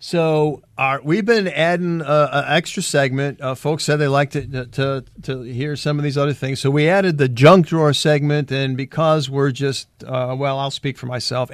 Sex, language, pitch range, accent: male, English, 130-155 Hz, American